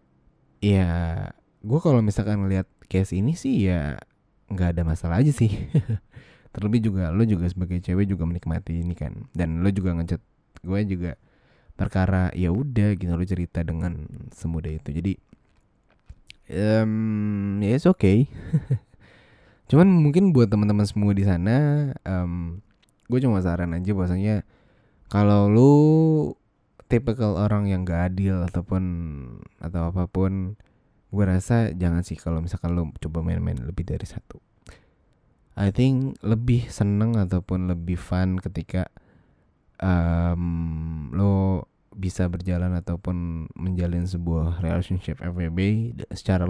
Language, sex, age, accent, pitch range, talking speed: English, male, 20-39, Indonesian, 85-105 Hz, 125 wpm